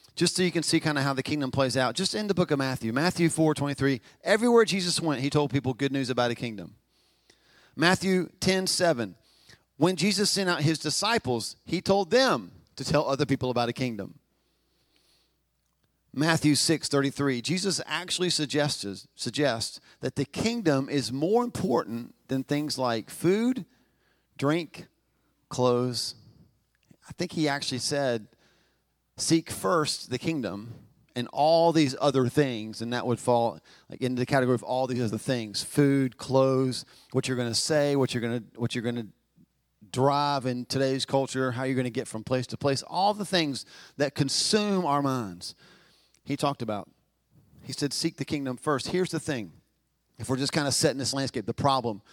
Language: English